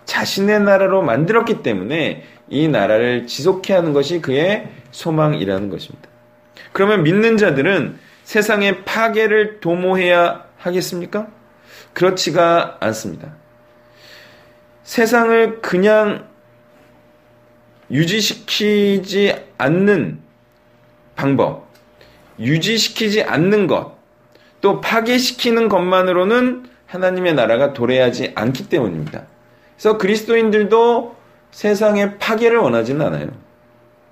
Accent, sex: native, male